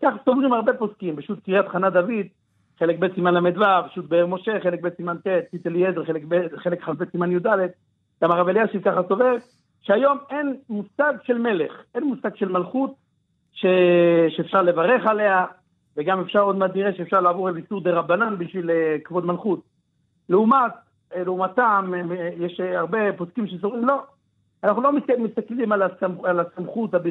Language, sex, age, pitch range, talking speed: Hebrew, male, 50-69, 175-230 Hz, 140 wpm